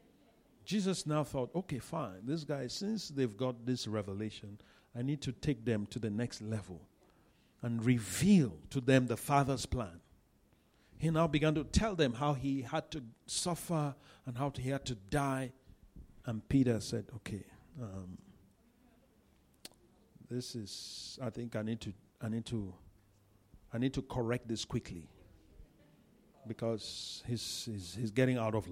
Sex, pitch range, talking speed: male, 105-155 Hz, 155 wpm